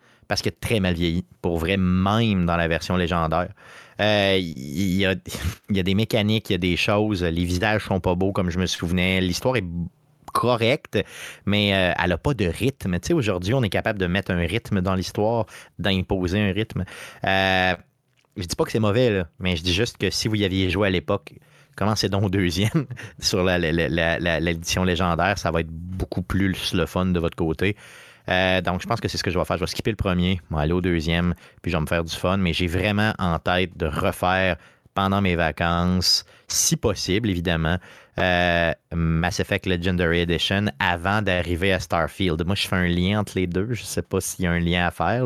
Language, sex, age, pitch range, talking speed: French, male, 30-49, 85-100 Hz, 220 wpm